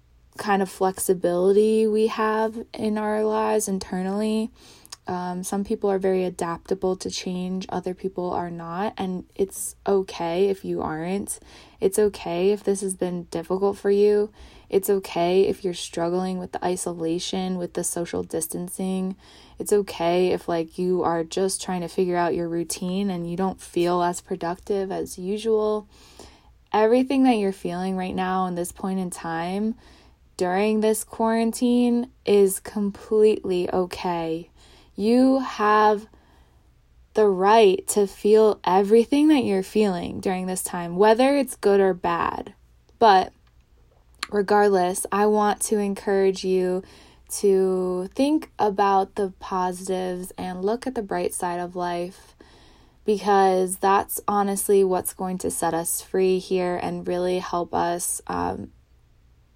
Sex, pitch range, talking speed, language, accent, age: female, 180-210 Hz, 140 wpm, English, American, 20-39